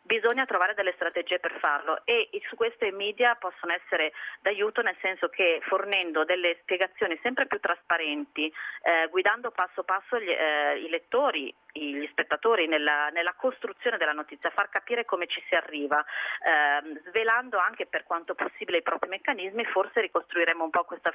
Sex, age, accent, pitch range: female, 30-49, native, 160-205 Hz